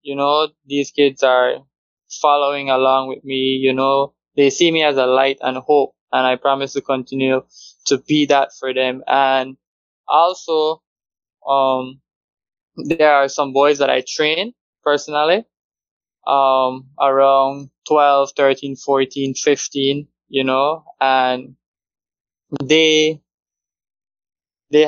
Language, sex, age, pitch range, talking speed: English, male, 20-39, 130-150 Hz, 125 wpm